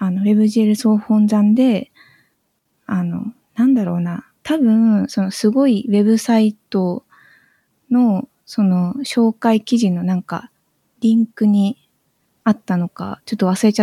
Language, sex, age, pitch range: Japanese, female, 20-39, 190-230 Hz